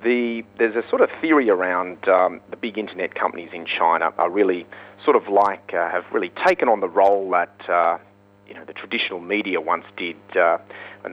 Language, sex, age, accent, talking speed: English, male, 40-59, Australian, 200 wpm